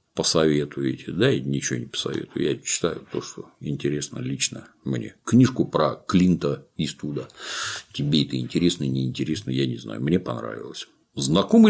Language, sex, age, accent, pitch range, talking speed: Russian, male, 50-69, native, 70-105 Hz, 145 wpm